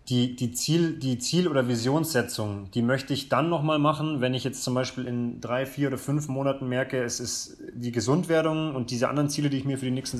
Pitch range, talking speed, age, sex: 120-140 Hz, 220 wpm, 30-49, male